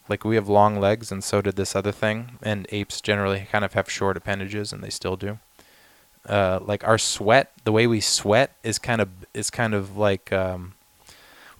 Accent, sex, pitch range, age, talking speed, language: American, male, 100-125 Hz, 20-39, 200 wpm, English